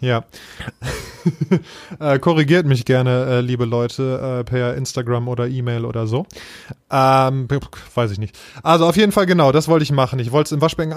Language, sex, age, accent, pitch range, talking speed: German, male, 20-39, German, 125-160 Hz, 180 wpm